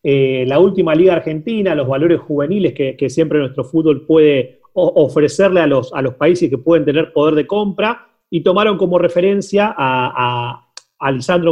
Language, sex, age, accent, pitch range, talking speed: Spanish, male, 30-49, Argentinian, 145-195 Hz, 180 wpm